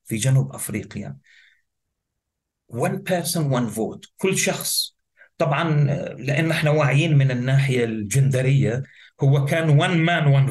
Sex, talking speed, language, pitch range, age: male, 120 wpm, Arabic, 130-175 Hz, 40-59